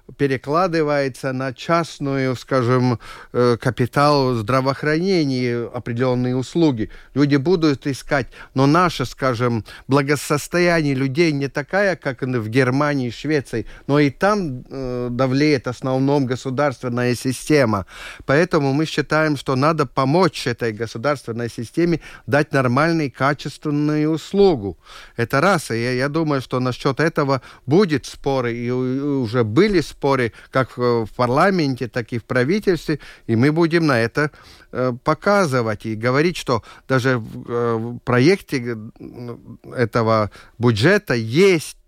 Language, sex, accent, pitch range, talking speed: Russian, male, native, 125-155 Hz, 115 wpm